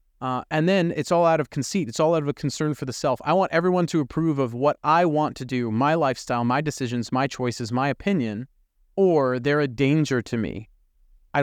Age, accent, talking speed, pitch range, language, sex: 30-49, American, 225 wpm, 120-165 Hz, English, male